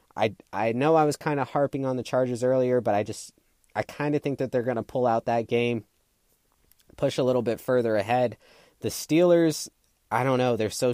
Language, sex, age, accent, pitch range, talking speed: English, male, 20-39, American, 105-130 Hz, 220 wpm